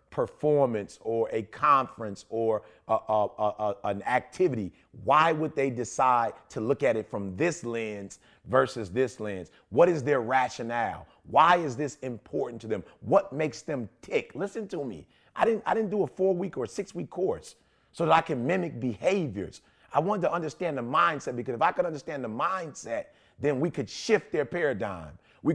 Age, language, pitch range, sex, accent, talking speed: 30-49, English, 115-175 Hz, male, American, 190 wpm